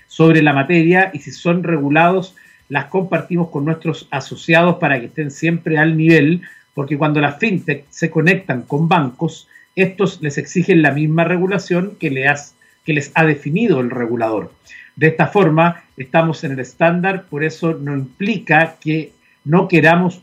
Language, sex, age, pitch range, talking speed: Spanish, male, 50-69, 145-180 Hz, 155 wpm